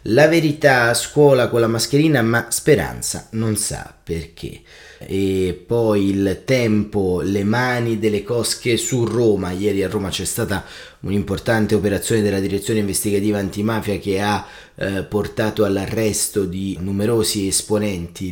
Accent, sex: native, male